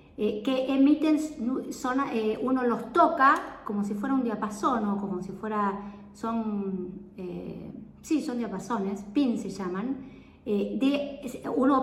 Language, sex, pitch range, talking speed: Spanish, female, 210-255 Hz, 125 wpm